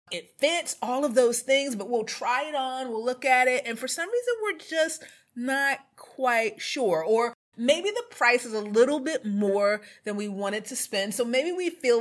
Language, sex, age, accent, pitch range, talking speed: English, female, 30-49, American, 190-260 Hz, 210 wpm